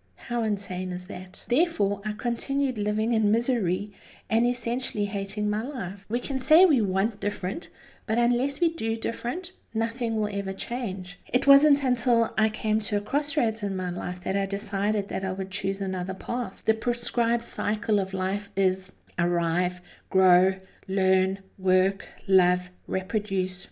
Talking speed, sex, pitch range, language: 155 wpm, female, 195-250 Hz, English